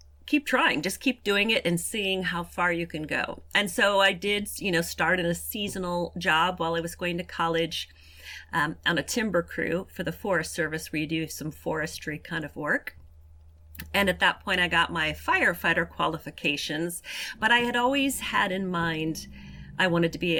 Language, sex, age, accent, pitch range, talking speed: English, female, 40-59, American, 155-190 Hz, 195 wpm